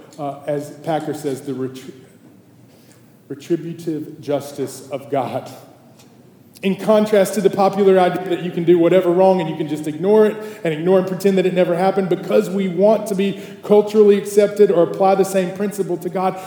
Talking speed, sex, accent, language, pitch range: 180 wpm, male, American, English, 160-200 Hz